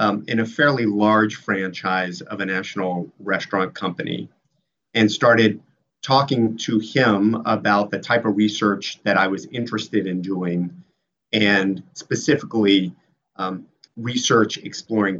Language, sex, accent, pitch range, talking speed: English, male, American, 100-120 Hz, 125 wpm